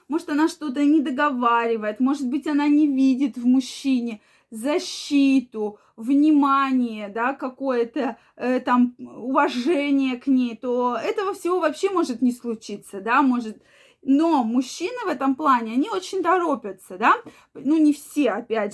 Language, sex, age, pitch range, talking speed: Russian, female, 20-39, 240-295 Hz, 140 wpm